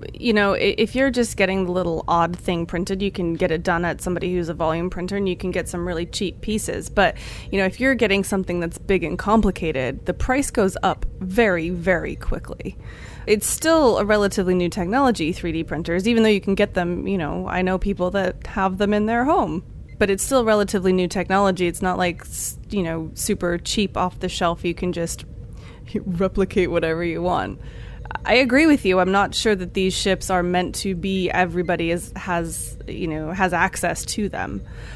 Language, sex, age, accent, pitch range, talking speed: English, female, 20-39, American, 175-210 Hz, 205 wpm